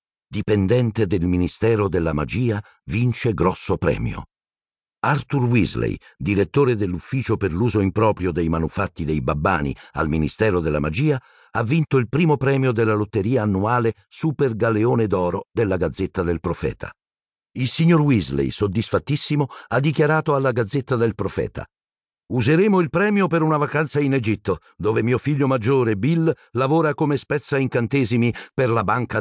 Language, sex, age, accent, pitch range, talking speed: Italian, male, 50-69, native, 90-130 Hz, 140 wpm